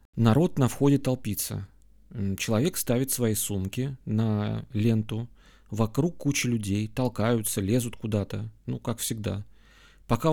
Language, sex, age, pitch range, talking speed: Russian, male, 30-49, 105-125 Hz, 115 wpm